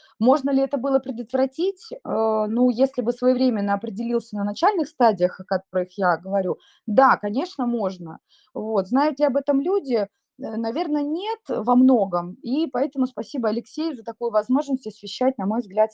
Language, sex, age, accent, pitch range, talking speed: Russian, female, 20-39, native, 205-275 Hz, 155 wpm